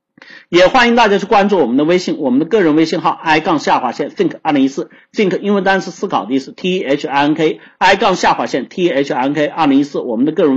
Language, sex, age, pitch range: Chinese, male, 50-69, 145-215 Hz